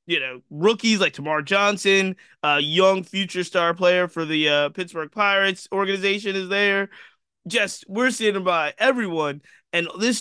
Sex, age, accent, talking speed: male, 20-39, American, 155 wpm